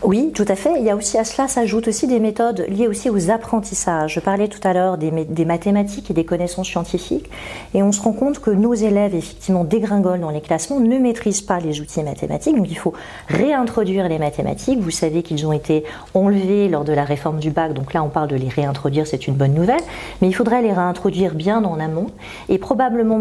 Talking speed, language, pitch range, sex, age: 230 wpm, French, 160-220 Hz, female, 40-59